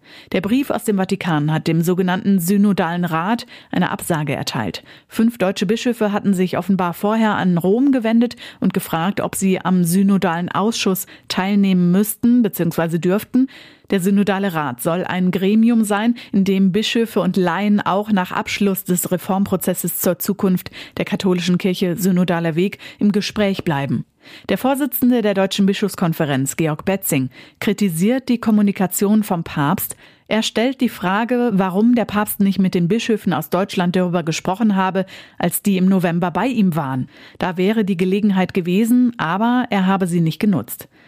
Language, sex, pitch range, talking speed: German, female, 180-215 Hz, 155 wpm